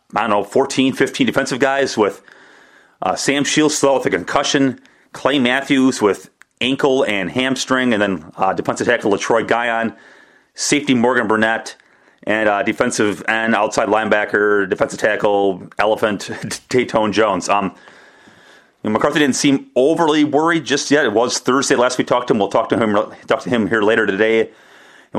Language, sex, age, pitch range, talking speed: English, male, 30-49, 105-140 Hz, 165 wpm